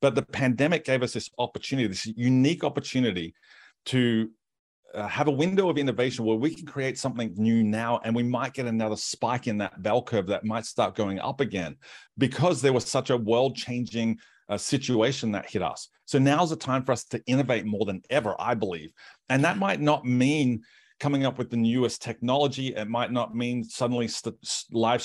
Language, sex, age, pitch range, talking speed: English, male, 40-59, 110-130 Hz, 190 wpm